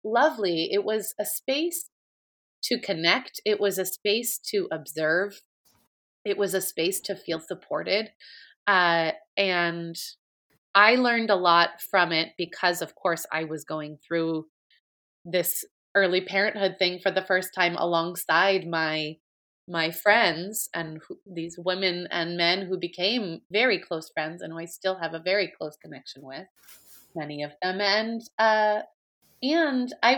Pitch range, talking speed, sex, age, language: 165-215 Hz, 150 wpm, female, 30-49, English